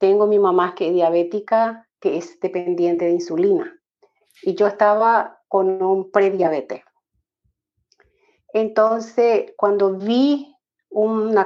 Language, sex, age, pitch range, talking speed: Spanish, female, 50-69, 180-225 Hz, 110 wpm